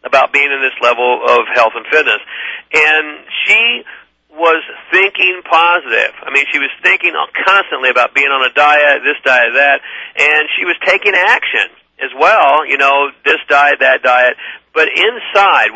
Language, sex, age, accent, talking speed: English, male, 40-59, American, 165 wpm